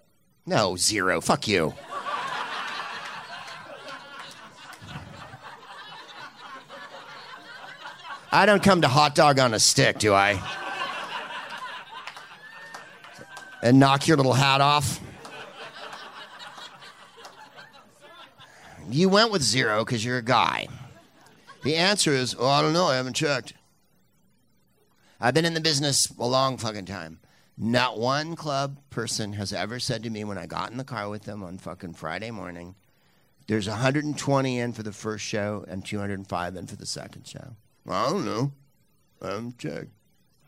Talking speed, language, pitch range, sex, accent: 130 wpm, English, 110-150 Hz, male, American